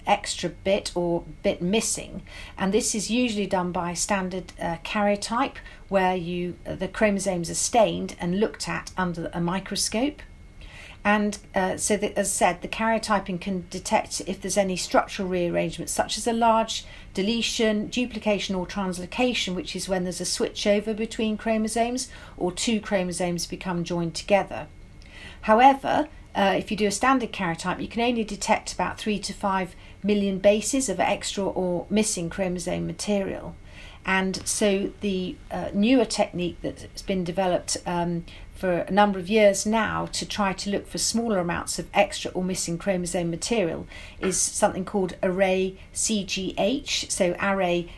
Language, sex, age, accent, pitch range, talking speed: English, female, 50-69, British, 180-210 Hz, 155 wpm